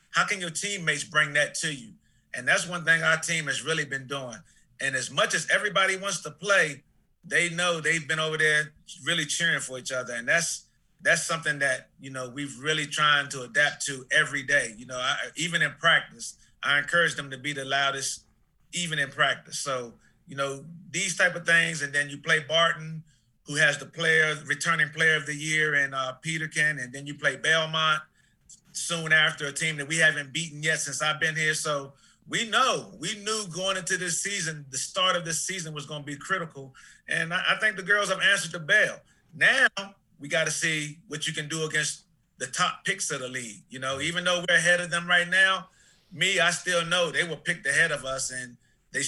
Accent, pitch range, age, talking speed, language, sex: American, 145-175 Hz, 30-49, 215 wpm, English, male